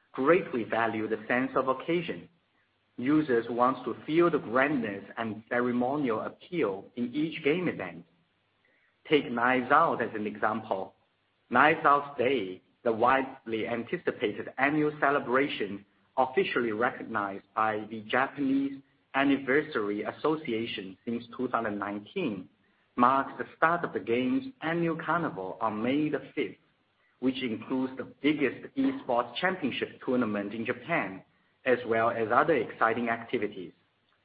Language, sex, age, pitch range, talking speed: English, male, 50-69, 110-140 Hz, 120 wpm